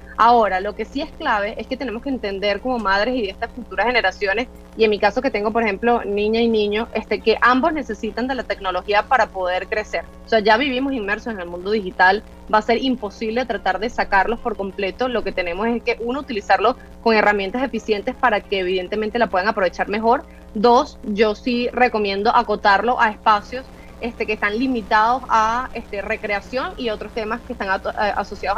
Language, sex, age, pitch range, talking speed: Spanish, female, 20-39, 205-245 Hz, 195 wpm